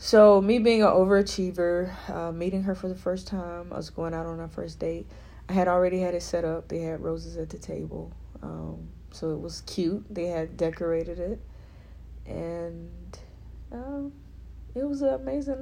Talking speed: 185 wpm